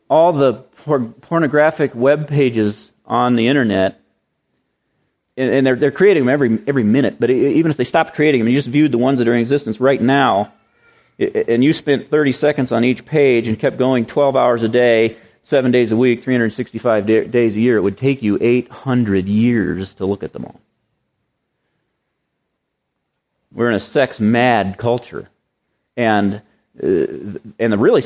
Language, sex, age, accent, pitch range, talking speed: English, male, 40-59, American, 120-190 Hz, 165 wpm